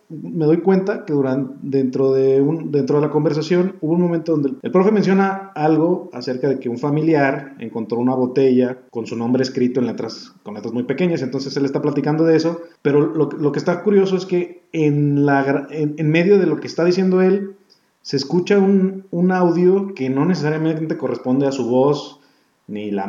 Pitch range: 125-160 Hz